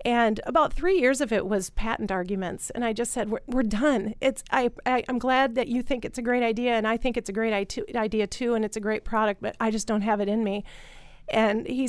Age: 40-59